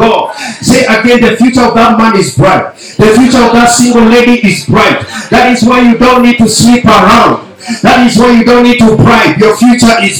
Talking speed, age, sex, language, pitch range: 220 wpm, 50-69, male, English, 215-240 Hz